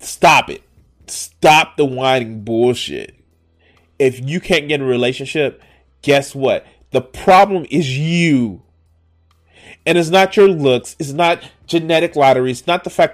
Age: 30-49